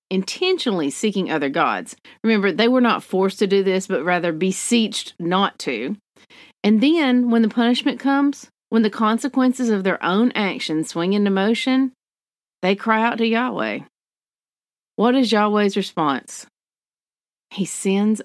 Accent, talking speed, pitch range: American, 145 wpm, 175-235 Hz